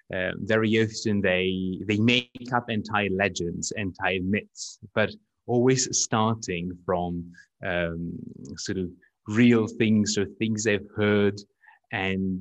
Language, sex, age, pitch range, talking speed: English, male, 30-49, 95-120 Hz, 130 wpm